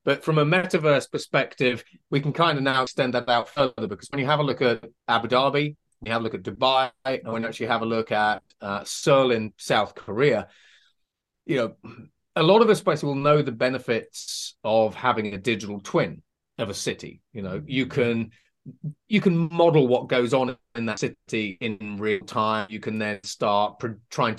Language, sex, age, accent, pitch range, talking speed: English, male, 30-49, British, 110-140 Hz, 195 wpm